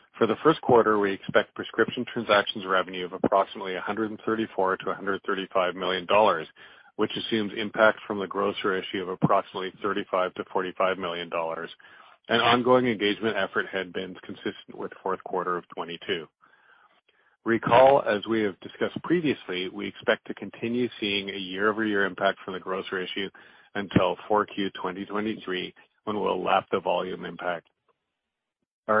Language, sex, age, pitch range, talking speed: English, male, 40-59, 95-110 Hz, 145 wpm